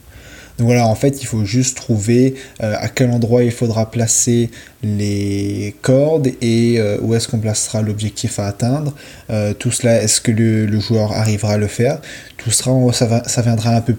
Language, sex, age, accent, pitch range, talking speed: French, male, 20-39, French, 105-125 Hz, 195 wpm